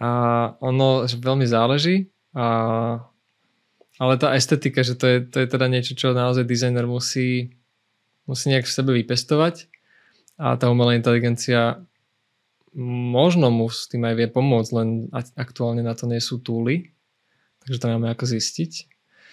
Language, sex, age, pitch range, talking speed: Slovak, male, 20-39, 115-130 Hz, 150 wpm